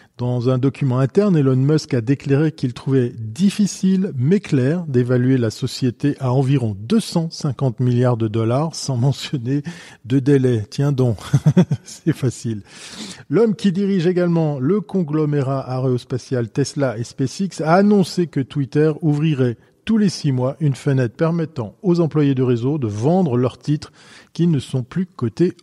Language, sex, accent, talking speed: French, male, French, 150 wpm